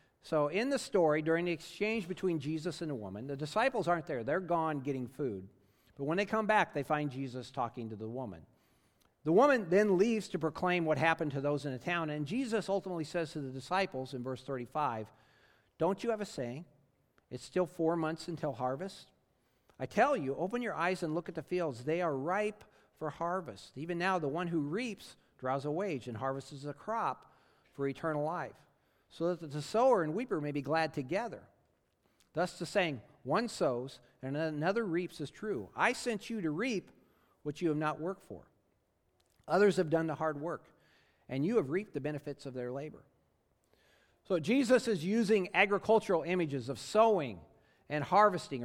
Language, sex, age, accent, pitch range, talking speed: English, male, 50-69, American, 135-185 Hz, 190 wpm